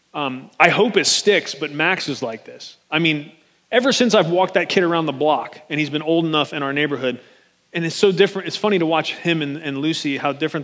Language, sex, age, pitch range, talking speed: English, male, 30-49, 155-195 Hz, 245 wpm